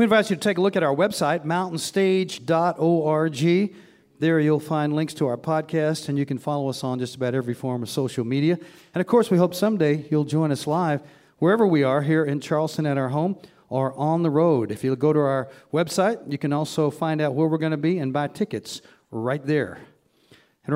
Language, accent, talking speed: English, American, 220 wpm